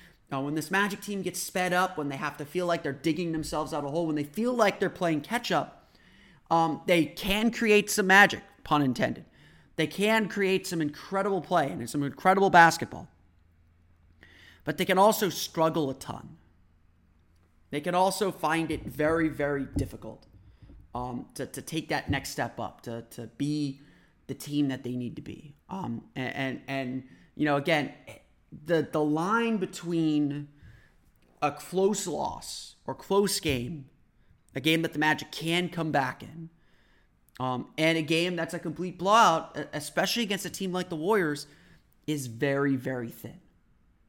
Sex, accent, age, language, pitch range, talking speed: male, American, 30-49, English, 130-175 Hz, 165 wpm